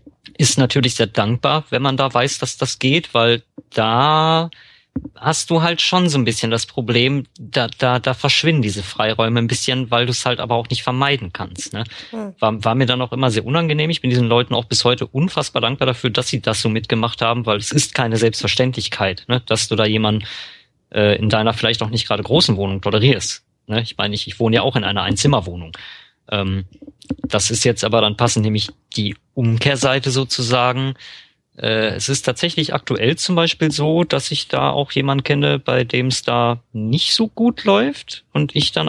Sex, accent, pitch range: male, German, 115-135 Hz